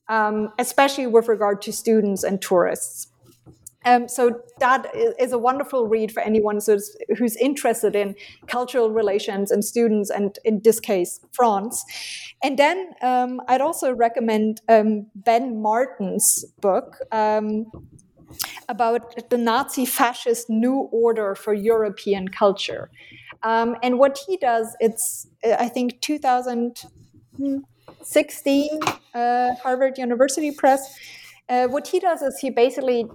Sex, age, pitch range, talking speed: female, 30-49, 210-250 Hz, 130 wpm